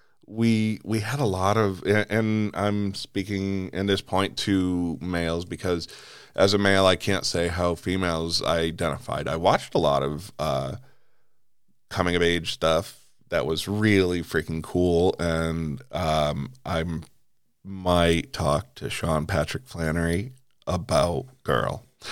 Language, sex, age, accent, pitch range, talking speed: English, male, 40-59, American, 80-100 Hz, 135 wpm